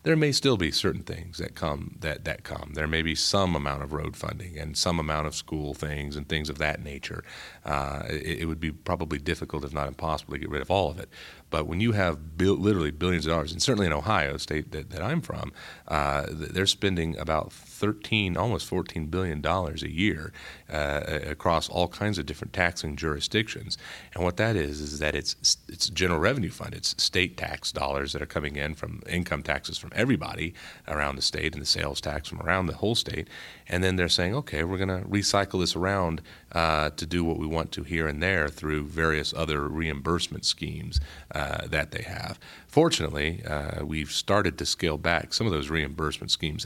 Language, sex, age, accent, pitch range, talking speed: English, male, 40-59, American, 75-95 Hz, 210 wpm